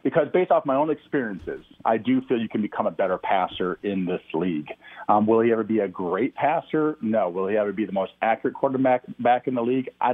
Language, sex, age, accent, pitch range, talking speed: English, male, 40-59, American, 110-140 Hz, 235 wpm